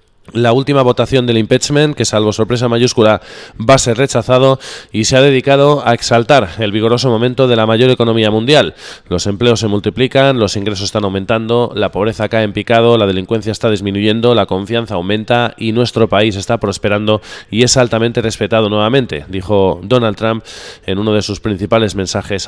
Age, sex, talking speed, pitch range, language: 20-39, male, 175 wpm, 100-120 Hz, Spanish